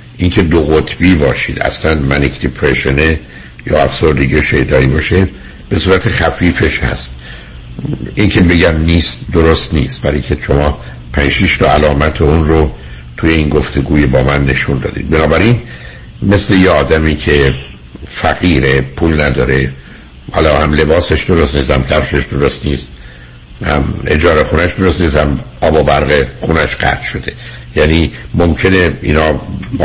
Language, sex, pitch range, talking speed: Persian, male, 65-85 Hz, 135 wpm